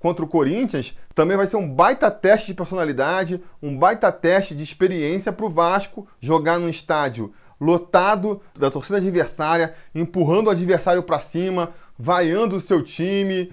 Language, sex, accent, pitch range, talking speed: Portuguese, male, Brazilian, 150-190 Hz, 155 wpm